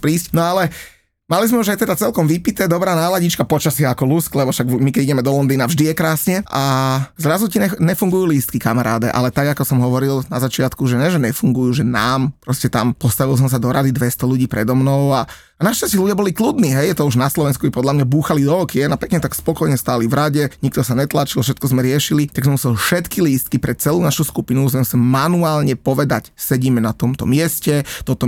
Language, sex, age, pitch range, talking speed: Slovak, male, 30-49, 130-160 Hz, 220 wpm